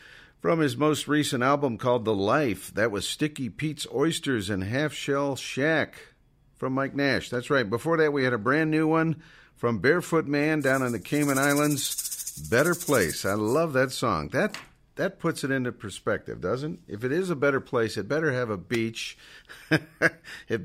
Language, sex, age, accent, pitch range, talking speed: English, male, 50-69, American, 110-140 Hz, 185 wpm